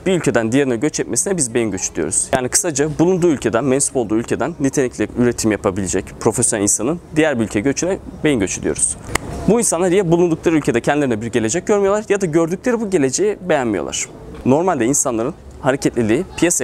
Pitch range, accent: 120-175 Hz, native